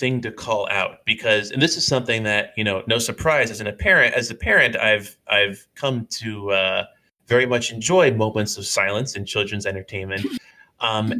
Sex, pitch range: male, 105-130 Hz